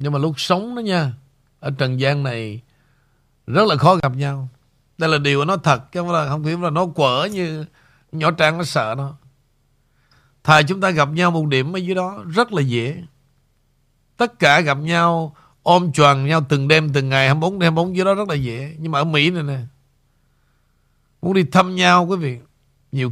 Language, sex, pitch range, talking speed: Vietnamese, male, 135-175 Hz, 200 wpm